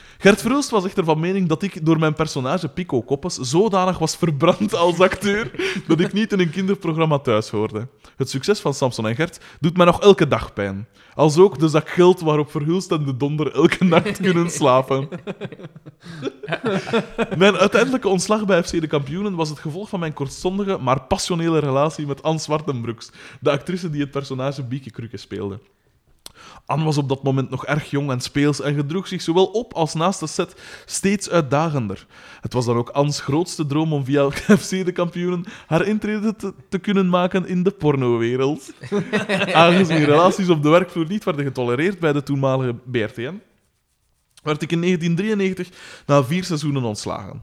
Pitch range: 140-185 Hz